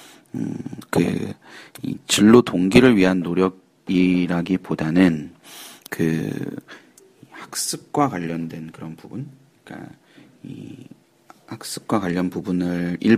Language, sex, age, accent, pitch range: Korean, male, 40-59, native, 85-115 Hz